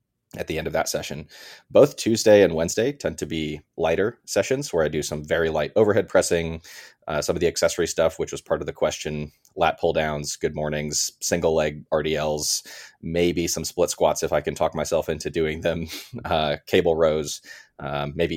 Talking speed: 195 wpm